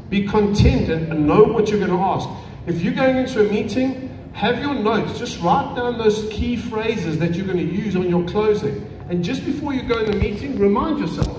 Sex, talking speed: male, 220 wpm